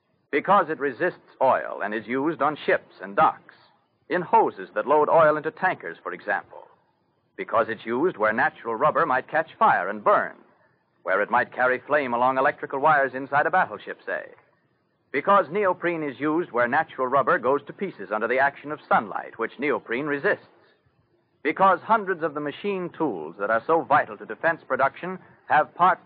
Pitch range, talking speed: 135-180 Hz, 175 wpm